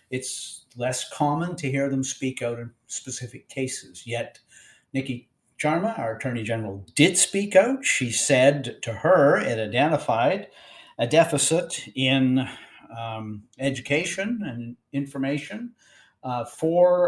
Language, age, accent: English, 50-69, American